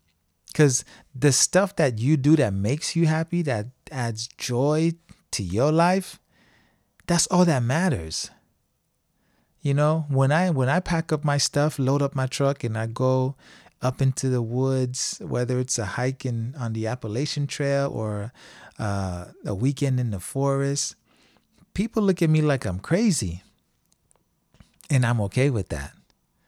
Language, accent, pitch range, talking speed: English, American, 115-155 Hz, 155 wpm